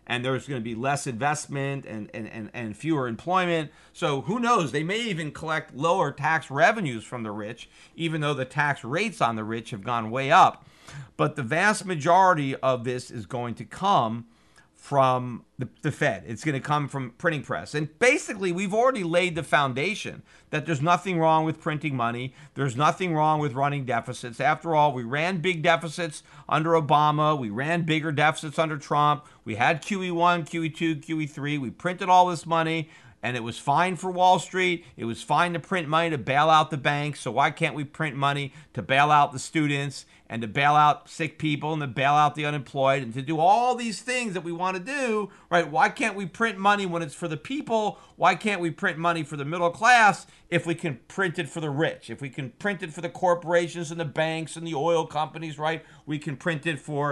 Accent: American